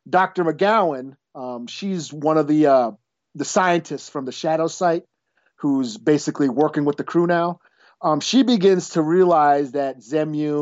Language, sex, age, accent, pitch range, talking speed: English, male, 40-59, American, 145-180 Hz, 160 wpm